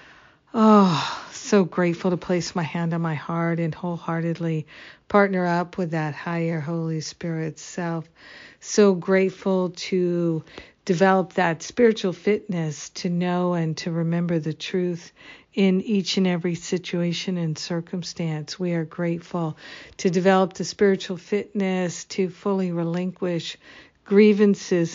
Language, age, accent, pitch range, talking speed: English, 50-69, American, 165-190 Hz, 125 wpm